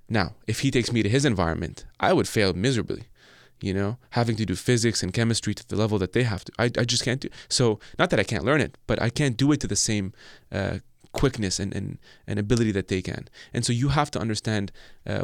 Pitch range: 105-120 Hz